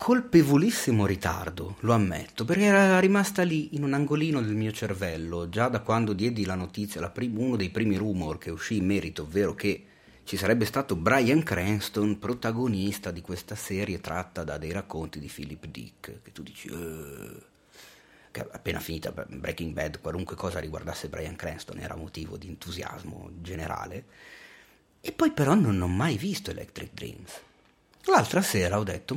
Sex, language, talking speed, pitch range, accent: male, Italian, 165 wpm, 90-115 Hz, native